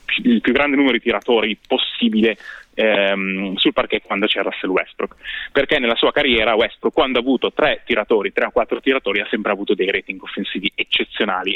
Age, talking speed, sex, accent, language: 20-39, 180 wpm, male, native, Italian